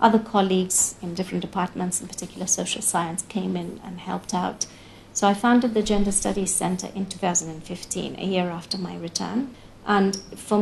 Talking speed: 170 wpm